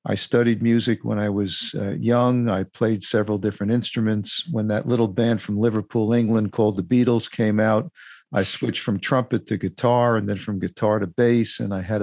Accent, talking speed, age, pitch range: American, 195 wpm, 50-69, 110-130 Hz